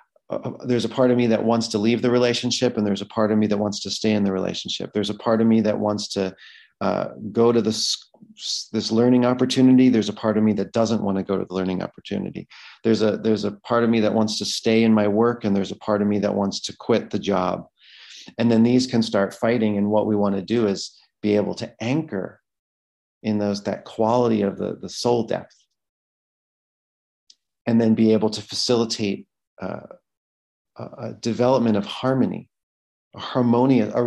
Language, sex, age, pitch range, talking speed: English, male, 40-59, 100-115 Hz, 210 wpm